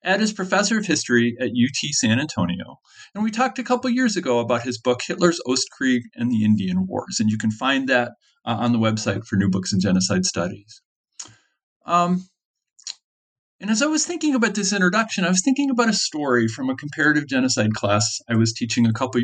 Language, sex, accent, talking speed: English, male, American, 205 wpm